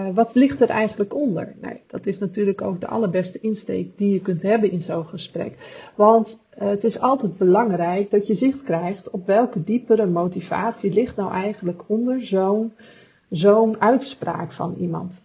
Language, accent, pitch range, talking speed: Dutch, Dutch, 180-225 Hz, 160 wpm